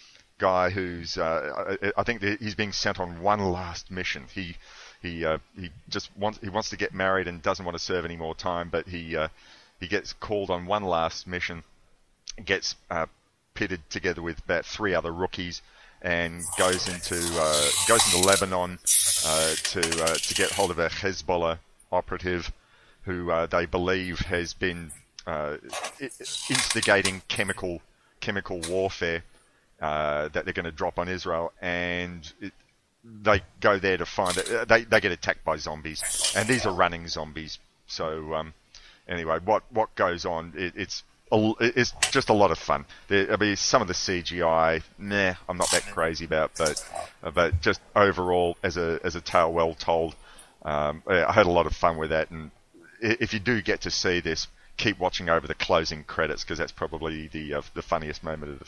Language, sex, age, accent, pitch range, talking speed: English, male, 30-49, Australian, 80-95 Hz, 180 wpm